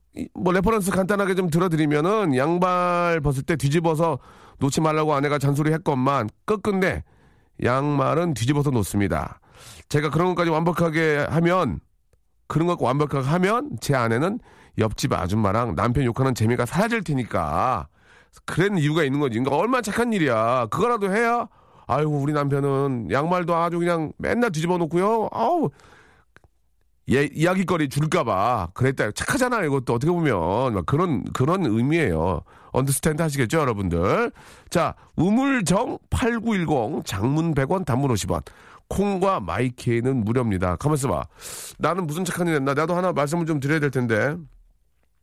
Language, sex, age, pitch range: Korean, male, 40-59, 125-175 Hz